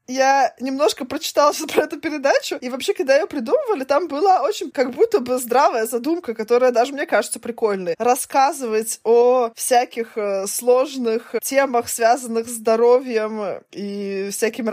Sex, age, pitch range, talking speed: female, 20-39, 225-280 Hz, 140 wpm